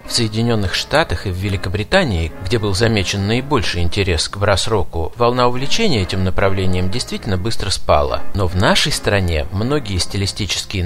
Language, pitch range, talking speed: Russian, 95-125 Hz, 145 wpm